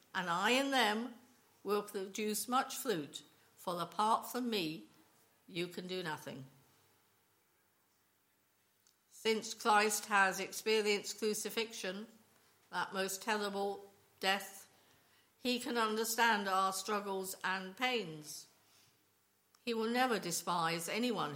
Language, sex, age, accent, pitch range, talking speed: English, female, 60-79, British, 165-225 Hz, 105 wpm